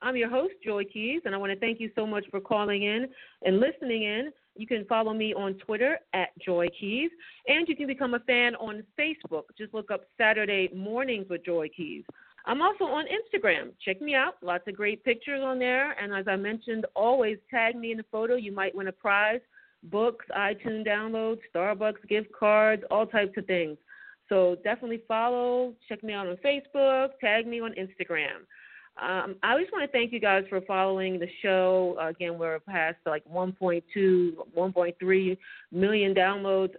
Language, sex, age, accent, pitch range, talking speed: English, female, 40-59, American, 185-230 Hz, 190 wpm